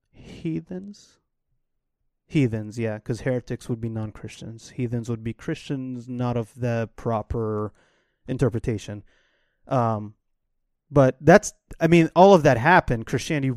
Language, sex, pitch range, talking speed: English, male, 115-140 Hz, 120 wpm